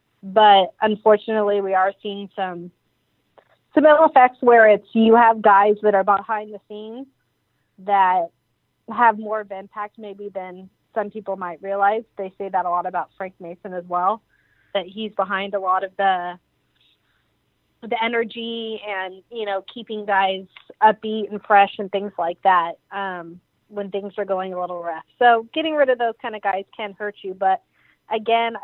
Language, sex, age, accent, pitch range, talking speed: English, female, 30-49, American, 195-225 Hz, 170 wpm